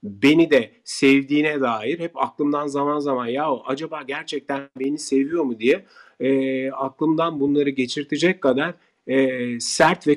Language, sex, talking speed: Turkish, male, 135 wpm